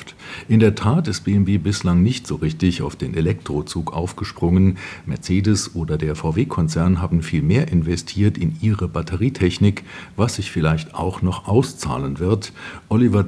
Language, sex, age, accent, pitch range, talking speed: German, male, 50-69, German, 85-105 Hz, 145 wpm